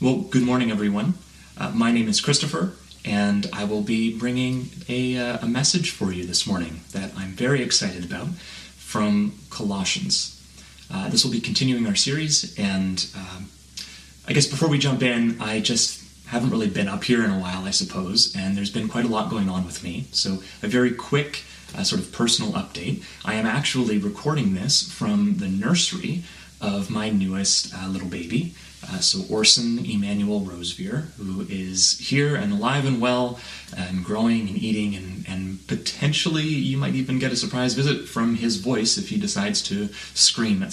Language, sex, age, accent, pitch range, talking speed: English, male, 30-49, American, 95-165 Hz, 180 wpm